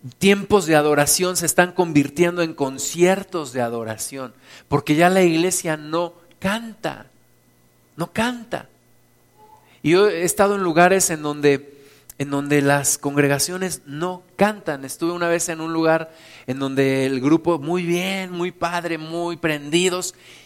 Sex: male